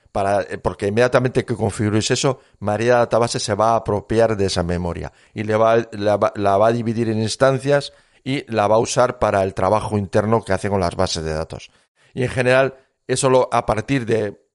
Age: 40-59